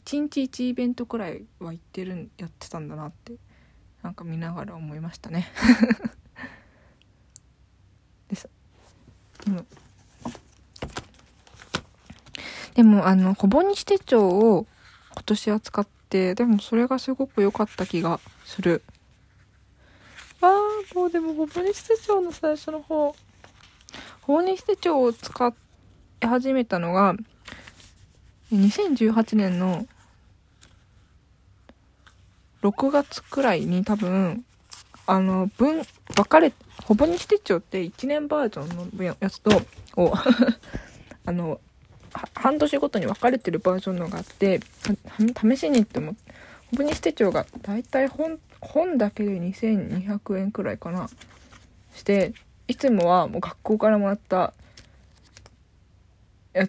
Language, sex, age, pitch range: Japanese, female, 20-39, 165-245 Hz